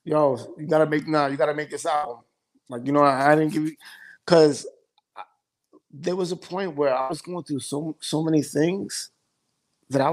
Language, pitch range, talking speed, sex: English, 130-155 Hz, 200 wpm, male